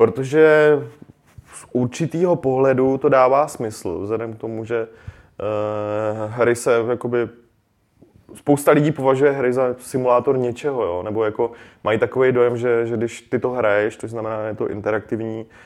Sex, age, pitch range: male, 20-39, 110-125 Hz